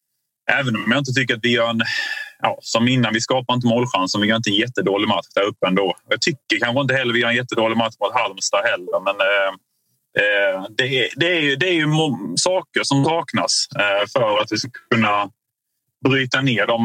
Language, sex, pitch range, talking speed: Swedish, male, 115-150 Hz, 225 wpm